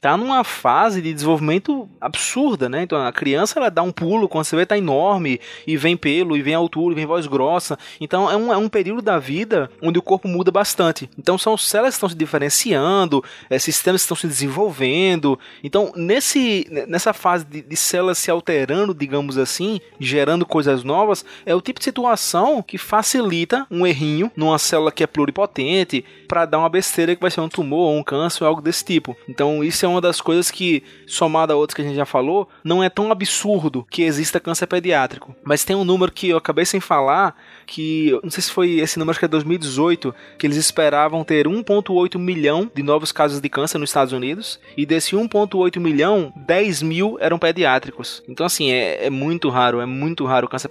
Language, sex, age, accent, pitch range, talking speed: Portuguese, male, 20-39, Brazilian, 150-185 Hz, 205 wpm